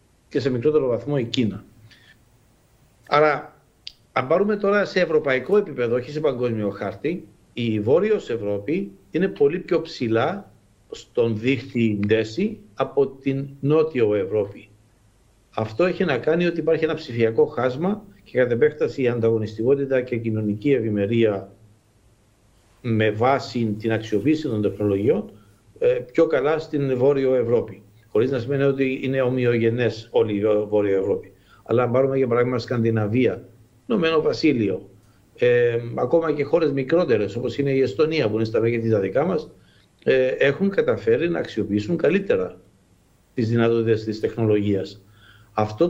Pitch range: 110-145 Hz